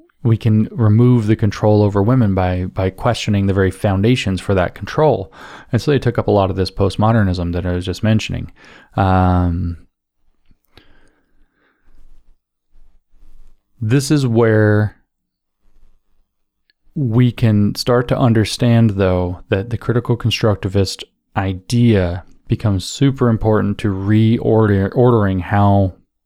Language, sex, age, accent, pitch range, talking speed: English, male, 20-39, American, 95-110 Hz, 120 wpm